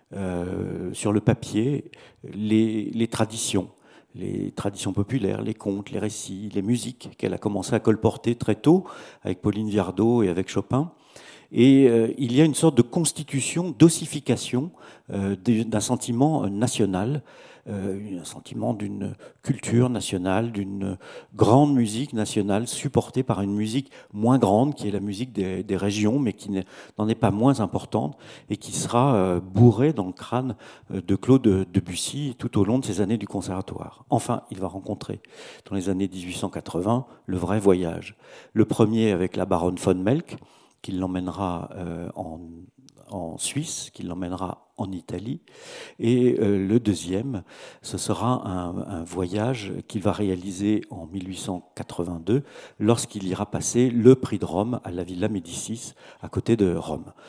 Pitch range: 95-125 Hz